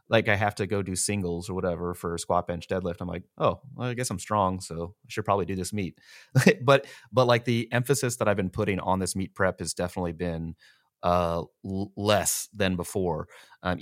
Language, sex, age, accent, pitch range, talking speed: English, male, 30-49, American, 85-100 Hz, 215 wpm